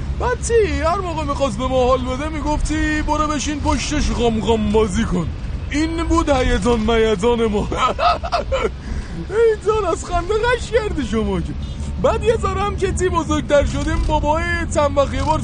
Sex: male